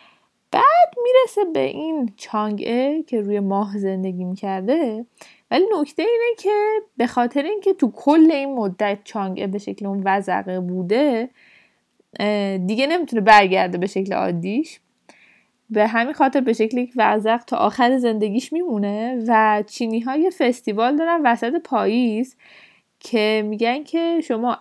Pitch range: 215-295 Hz